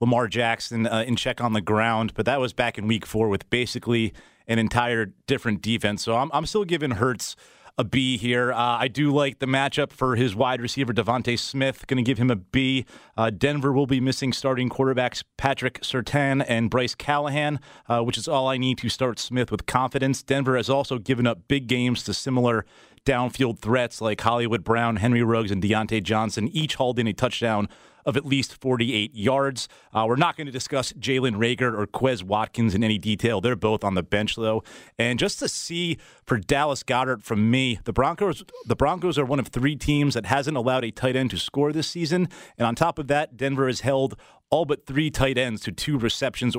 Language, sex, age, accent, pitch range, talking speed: English, male, 30-49, American, 115-140 Hz, 210 wpm